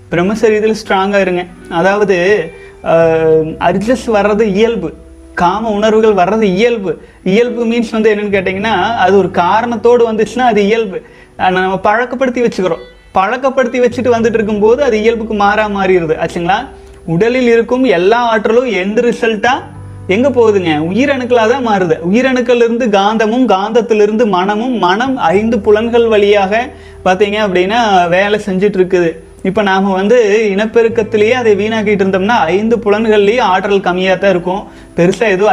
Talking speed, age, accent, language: 125 wpm, 30-49, native, Tamil